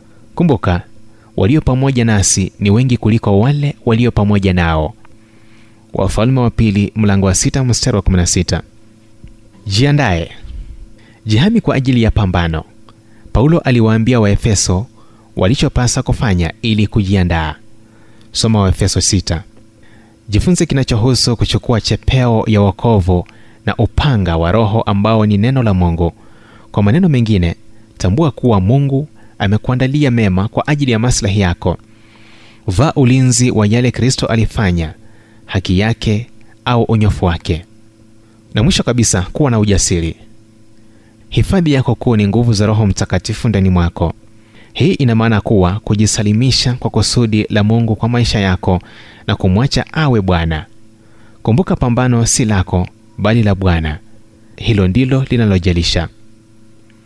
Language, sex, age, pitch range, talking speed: Swahili, male, 30-49, 100-115 Hz, 125 wpm